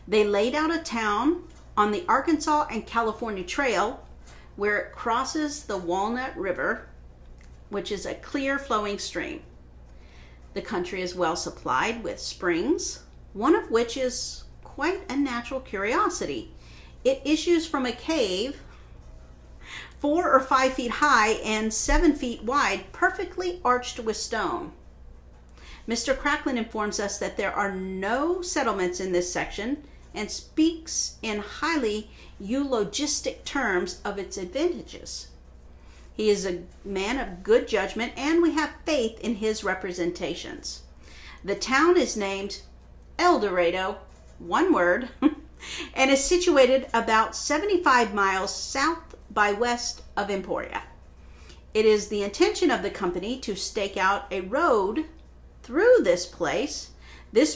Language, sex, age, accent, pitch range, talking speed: English, female, 50-69, American, 190-285 Hz, 130 wpm